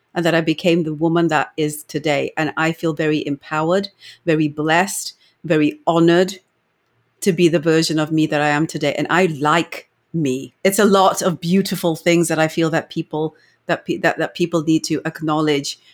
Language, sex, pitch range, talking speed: English, female, 160-190 Hz, 190 wpm